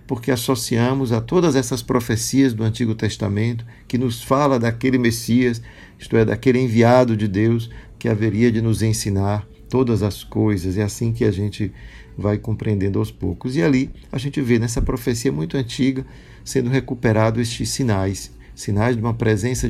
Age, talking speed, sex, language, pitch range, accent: 50-69, 165 wpm, male, Portuguese, 105-125 Hz, Brazilian